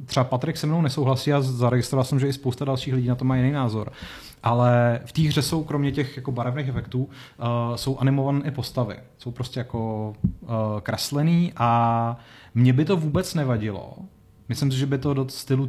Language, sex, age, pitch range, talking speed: Czech, male, 30-49, 120-135 Hz, 195 wpm